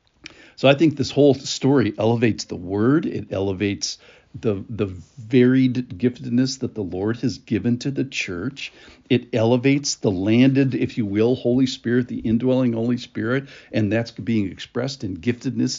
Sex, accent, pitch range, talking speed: male, American, 105-130 Hz, 160 wpm